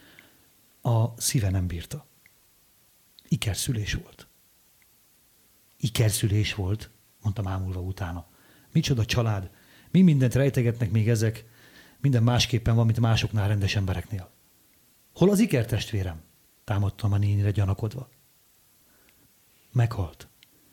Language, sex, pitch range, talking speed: Hungarian, male, 105-140 Hz, 95 wpm